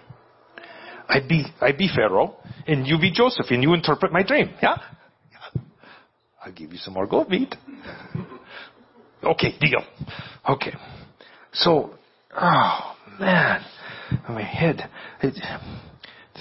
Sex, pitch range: male, 105-145 Hz